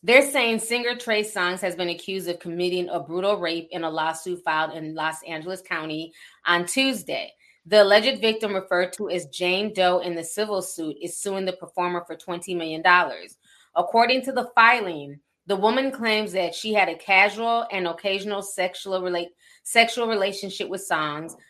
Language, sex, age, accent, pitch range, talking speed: English, female, 20-39, American, 170-210 Hz, 170 wpm